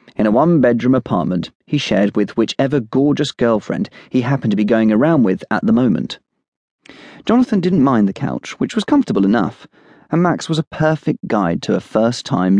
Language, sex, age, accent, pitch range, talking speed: English, male, 30-49, British, 110-165 Hz, 185 wpm